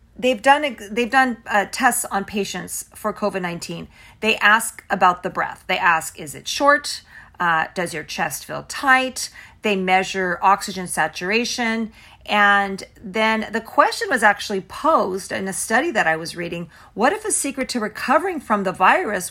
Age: 40-59